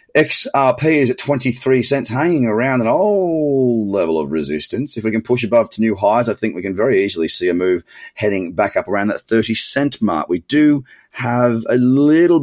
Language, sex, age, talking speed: English, male, 30-49, 205 wpm